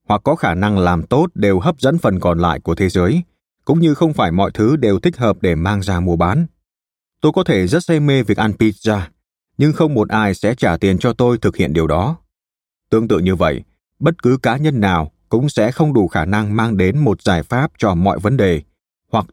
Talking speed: 235 wpm